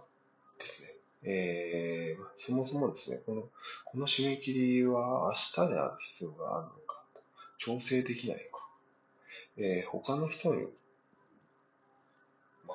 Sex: male